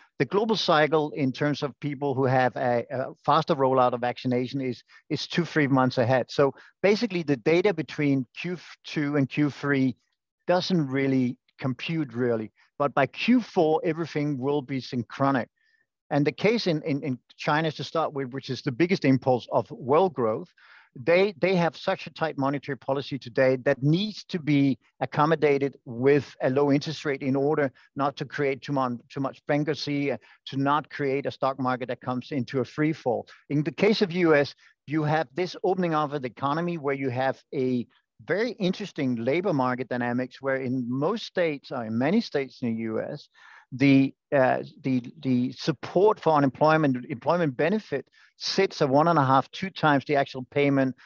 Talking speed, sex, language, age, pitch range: 180 wpm, male, English, 50-69, 130-155 Hz